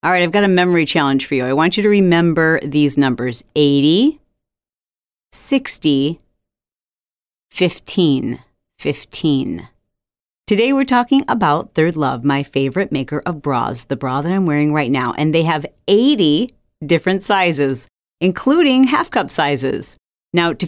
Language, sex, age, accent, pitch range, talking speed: English, female, 40-59, American, 145-205 Hz, 145 wpm